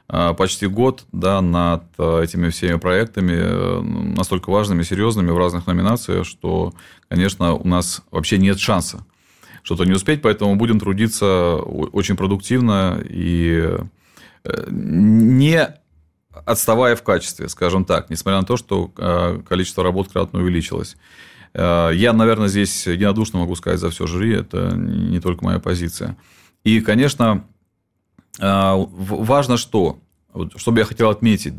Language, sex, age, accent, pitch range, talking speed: Russian, male, 30-49, native, 90-110 Hz, 125 wpm